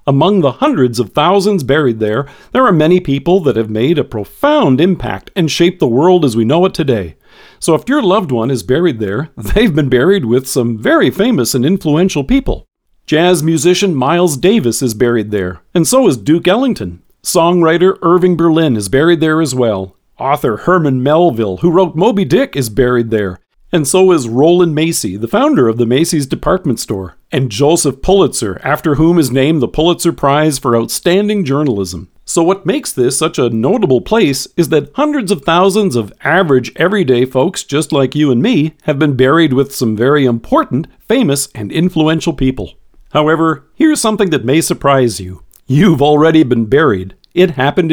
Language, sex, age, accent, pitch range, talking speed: English, male, 50-69, American, 125-175 Hz, 180 wpm